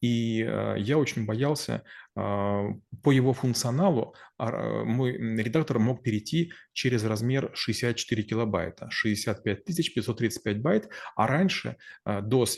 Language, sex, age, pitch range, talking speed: Russian, male, 30-49, 105-130 Hz, 100 wpm